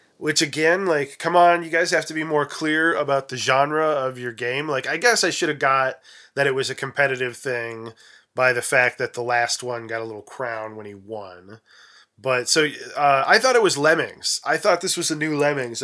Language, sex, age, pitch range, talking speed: English, male, 20-39, 120-145 Hz, 225 wpm